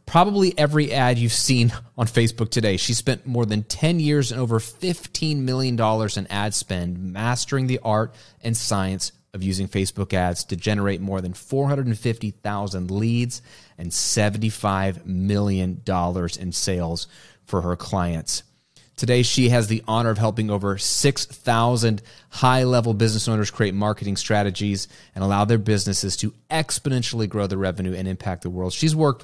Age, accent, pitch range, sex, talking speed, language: 30-49, American, 100-125 Hz, male, 155 wpm, English